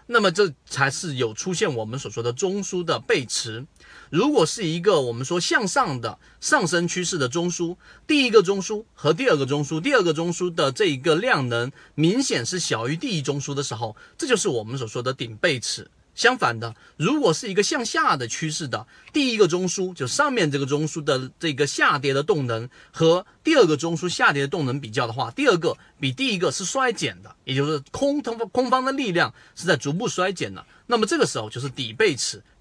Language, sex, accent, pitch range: Chinese, male, native, 130-185 Hz